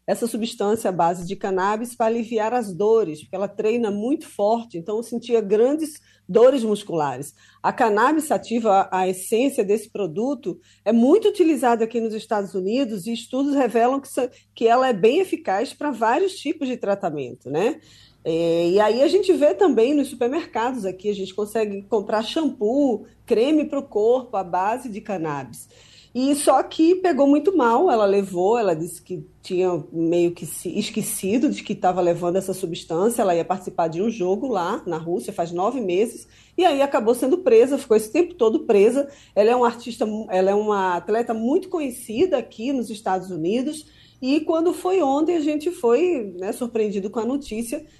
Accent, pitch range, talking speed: Brazilian, 200-280 Hz, 180 wpm